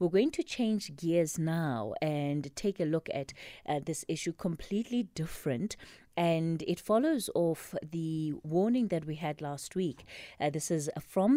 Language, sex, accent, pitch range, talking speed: English, female, South African, 155-205 Hz, 165 wpm